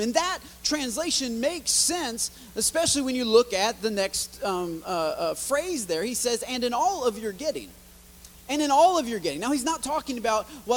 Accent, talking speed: American, 205 wpm